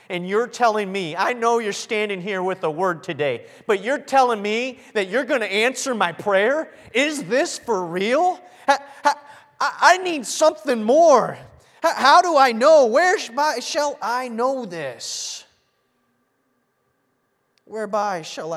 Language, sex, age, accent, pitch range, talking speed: English, male, 30-49, American, 155-255 Hz, 135 wpm